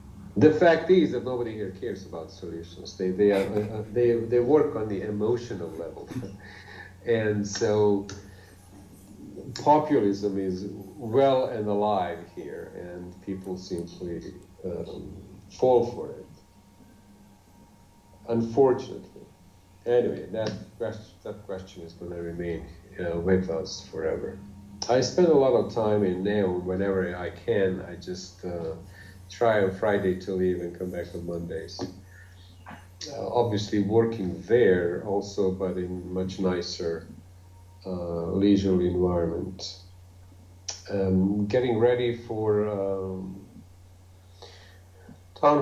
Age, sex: 50-69, male